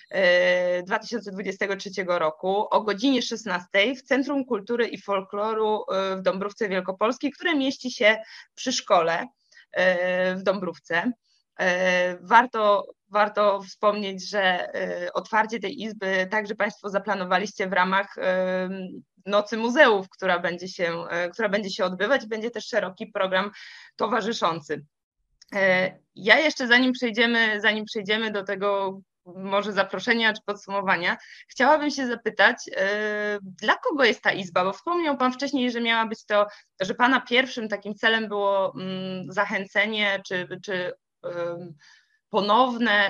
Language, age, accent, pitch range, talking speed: Polish, 20-39, native, 190-230 Hz, 115 wpm